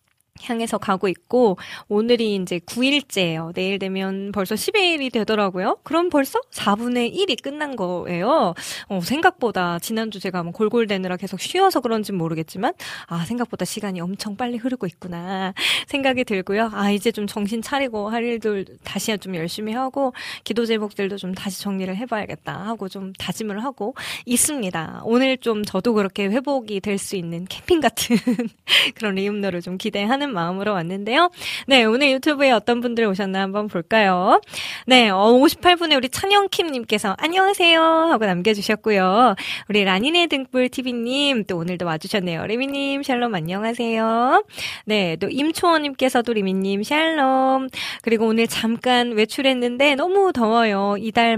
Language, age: Korean, 20-39